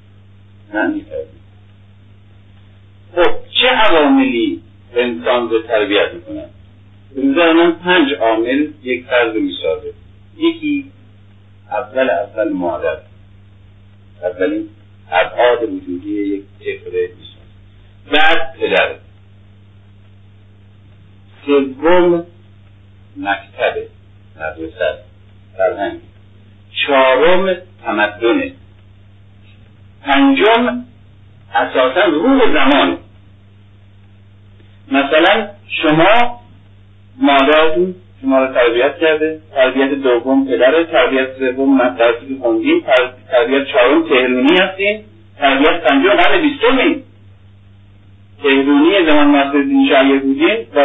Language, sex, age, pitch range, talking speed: Persian, male, 50-69, 100-150 Hz, 70 wpm